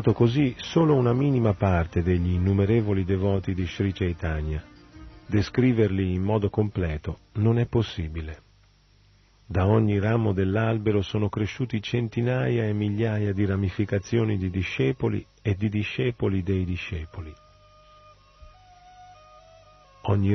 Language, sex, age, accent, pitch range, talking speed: Italian, male, 40-59, native, 95-115 Hz, 110 wpm